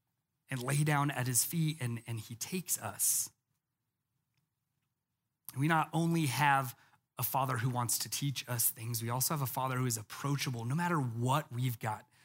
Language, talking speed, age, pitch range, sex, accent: English, 175 wpm, 30-49, 130-160 Hz, male, American